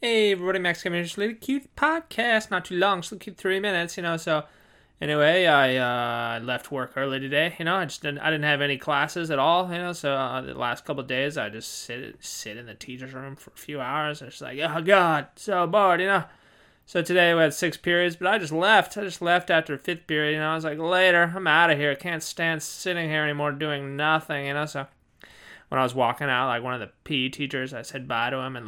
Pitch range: 145-210 Hz